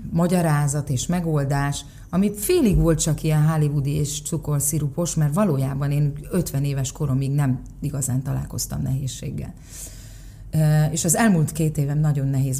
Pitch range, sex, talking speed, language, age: 130-155 Hz, female, 135 wpm, Hungarian, 30-49